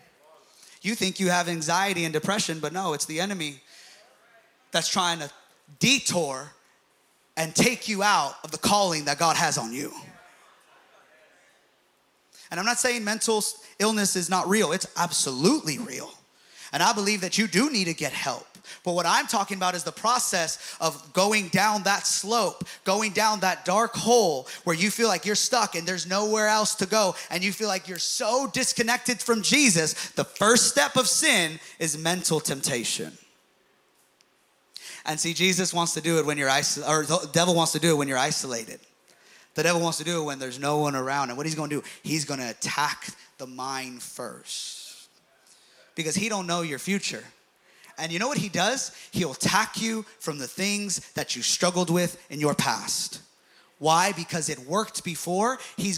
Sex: male